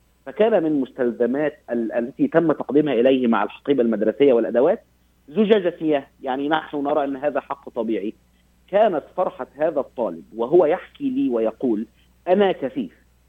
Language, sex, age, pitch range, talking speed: Arabic, male, 50-69, 115-160 Hz, 135 wpm